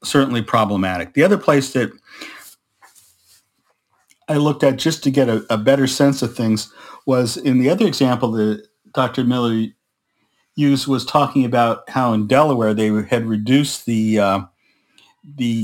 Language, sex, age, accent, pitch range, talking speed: English, male, 50-69, American, 110-135 Hz, 150 wpm